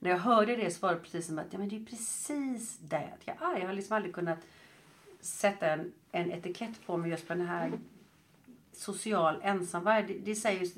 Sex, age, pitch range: female, 40-59, 165-205 Hz